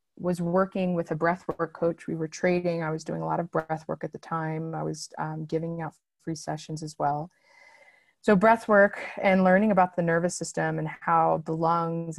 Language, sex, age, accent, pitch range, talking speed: English, female, 30-49, American, 155-185 Hz, 195 wpm